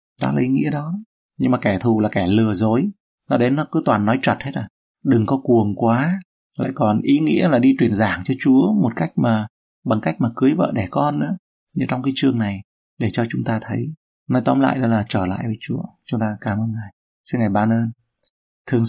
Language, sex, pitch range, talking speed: Vietnamese, male, 110-125 Hz, 240 wpm